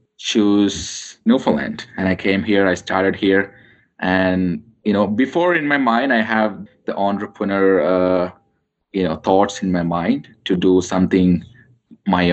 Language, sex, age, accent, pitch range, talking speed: English, male, 20-39, Indian, 90-115 Hz, 150 wpm